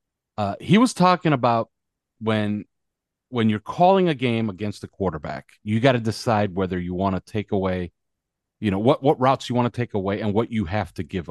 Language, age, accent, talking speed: English, 40-59, American, 210 wpm